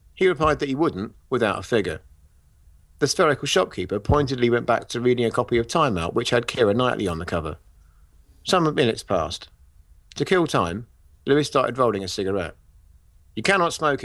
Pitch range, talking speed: 85-140 Hz, 180 wpm